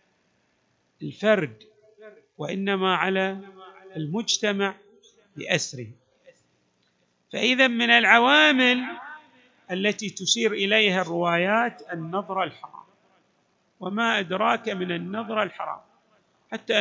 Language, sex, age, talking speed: Arabic, male, 50-69, 70 wpm